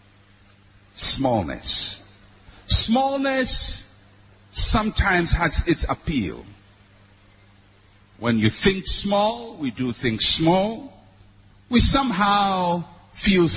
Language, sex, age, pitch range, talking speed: English, male, 50-69, 100-150 Hz, 75 wpm